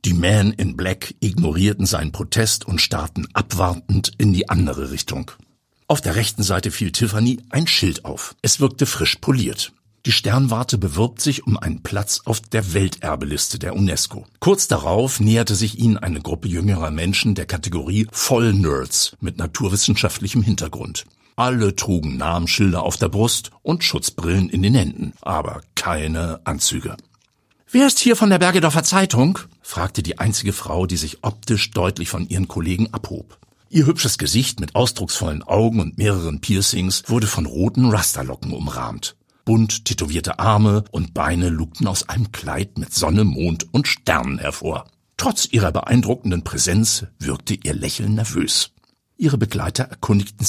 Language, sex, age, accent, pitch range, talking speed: German, male, 60-79, German, 90-115 Hz, 150 wpm